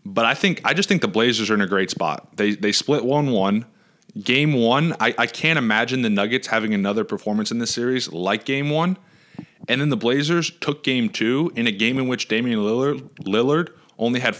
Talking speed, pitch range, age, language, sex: 215 wpm, 105-135 Hz, 20-39, English, male